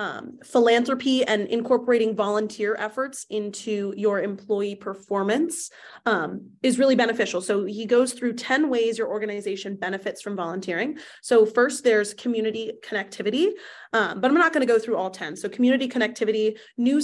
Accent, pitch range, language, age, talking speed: American, 215-250 Hz, English, 20-39, 155 wpm